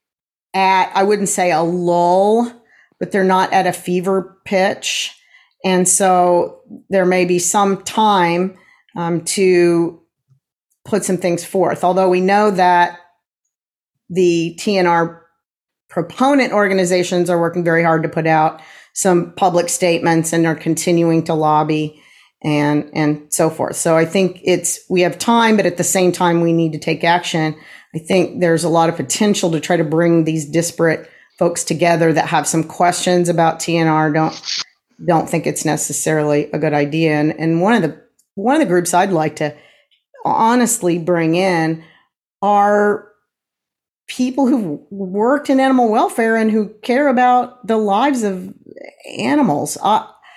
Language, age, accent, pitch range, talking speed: English, 40-59, American, 165-205 Hz, 155 wpm